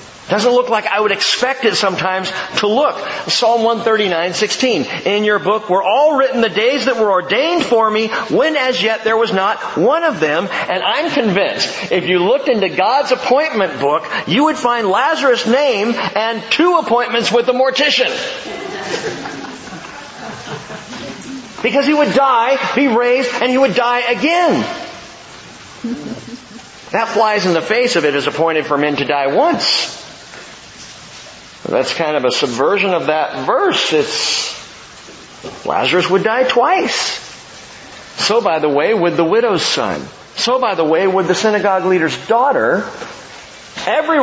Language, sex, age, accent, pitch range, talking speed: English, male, 50-69, American, 185-255 Hz, 150 wpm